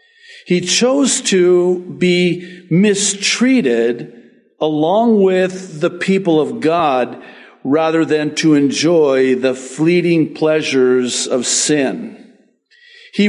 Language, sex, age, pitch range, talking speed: English, male, 50-69, 140-195 Hz, 95 wpm